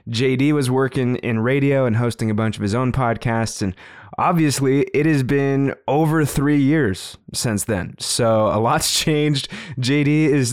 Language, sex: English, male